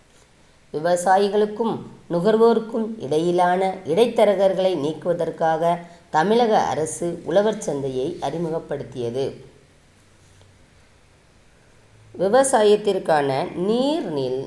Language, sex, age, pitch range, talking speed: Tamil, female, 20-39, 150-210 Hz, 45 wpm